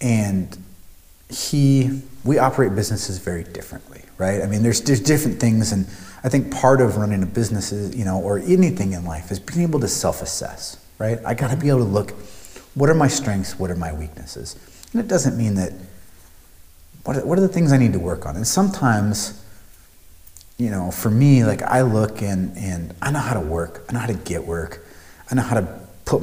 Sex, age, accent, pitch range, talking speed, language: male, 30-49, American, 90-130 Hz, 210 wpm, English